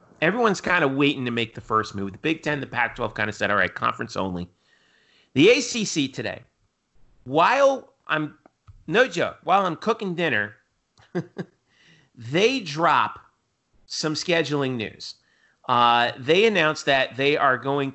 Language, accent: English, American